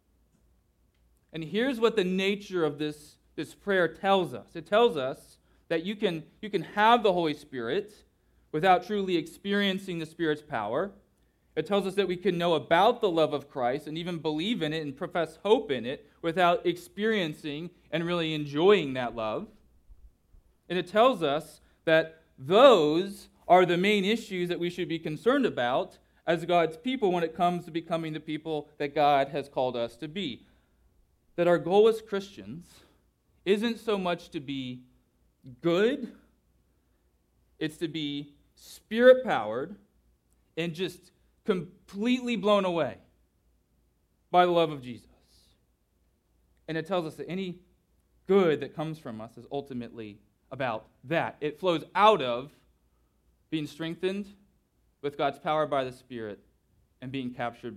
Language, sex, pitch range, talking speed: English, male, 125-185 Hz, 150 wpm